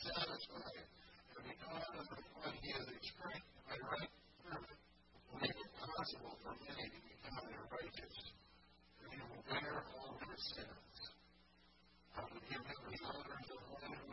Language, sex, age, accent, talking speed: English, female, 40-59, American, 155 wpm